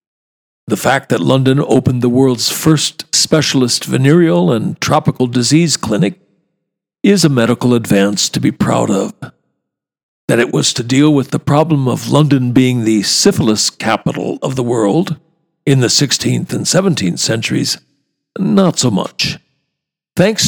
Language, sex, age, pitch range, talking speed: English, male, 60-79, 125-160 Hz, 145 wpm